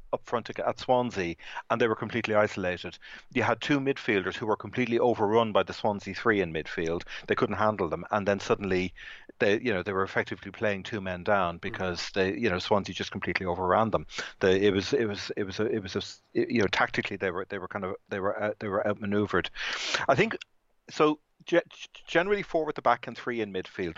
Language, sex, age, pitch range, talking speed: English, male, 40-59, 95-125 Hz, 220 wpm